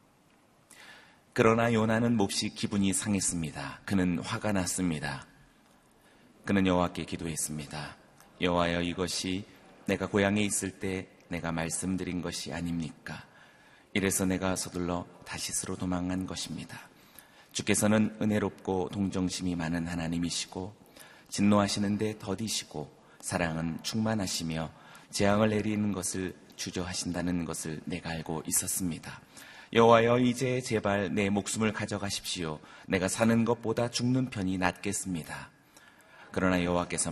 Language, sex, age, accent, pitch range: Korean, male, 30-49, native, 85-105 Hz